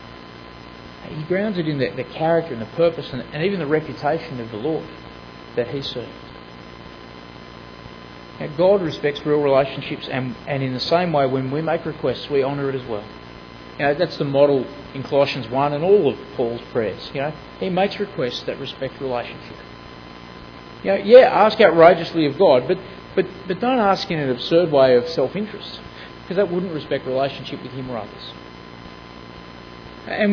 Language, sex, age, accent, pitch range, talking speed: English, male, 30-49, Australian, 120-170 Hz, 175 wpm